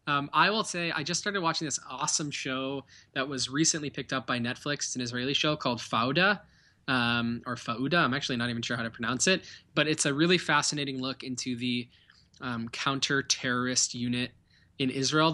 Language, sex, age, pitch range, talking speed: English, male, 20-39, 120-145 Hz, 190 wpm